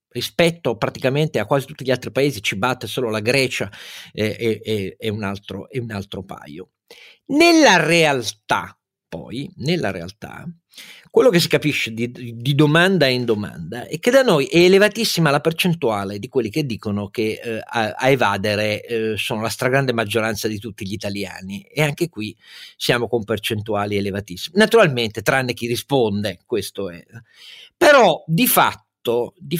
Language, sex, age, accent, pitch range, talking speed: Italian, male, 50-69, native, 105-155 Hz, 160 wpm